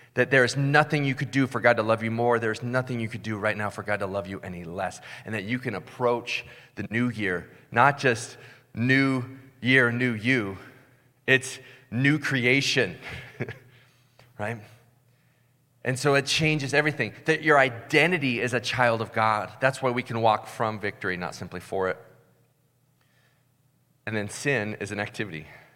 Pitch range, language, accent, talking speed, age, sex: 95-130 Hz, English, American, 175 wpm, 30-49, male